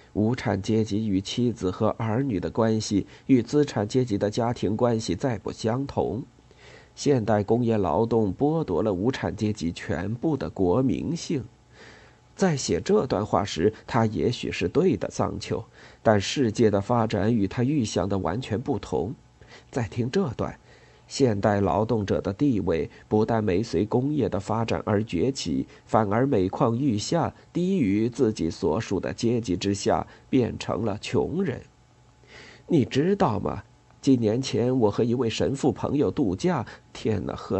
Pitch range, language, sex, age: 105-130 Hz, Chinese, male, 50-69